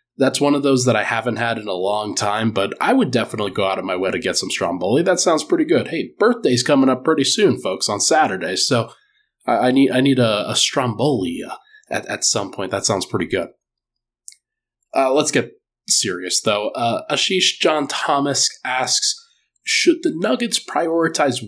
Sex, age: male, 20-39